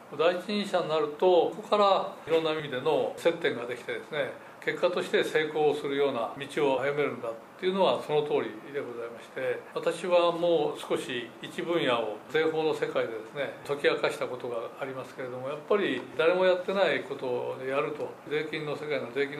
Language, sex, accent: Japanese, male, native